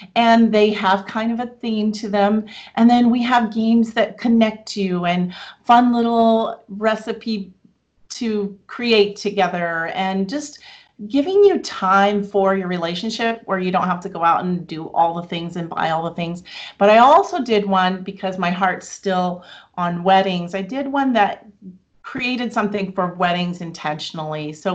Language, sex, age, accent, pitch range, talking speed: English, female, 40-59, American, 185-230 Hz, 170 wpm